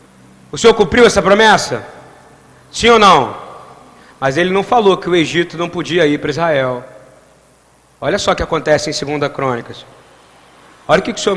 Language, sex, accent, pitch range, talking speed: Portuguese, male, Brazilian, 145-200 Hz, 175 wpm